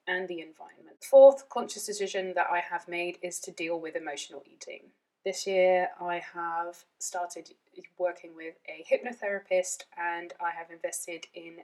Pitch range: 175-205 Hz